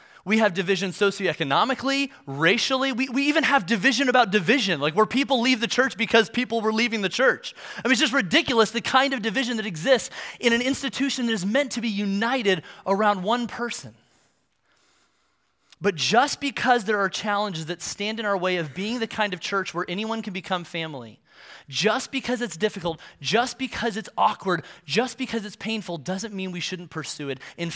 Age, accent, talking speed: 30-49, American, 190 wpm